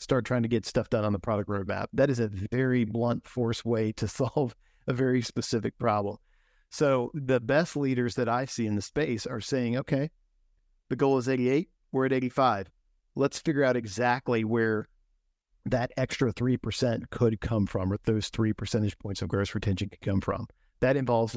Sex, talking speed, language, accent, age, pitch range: male, 190 wpm, English, American, 50-69, 110-130 Hz